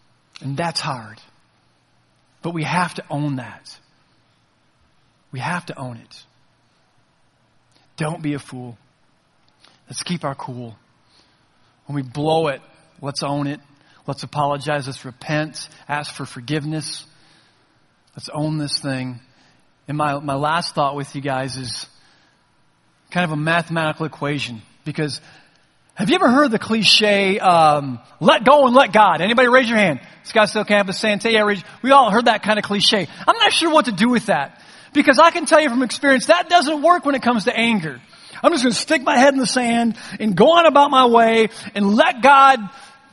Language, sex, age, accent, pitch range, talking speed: English, male, 40-59, American, 145-235 Hz, 175 wpm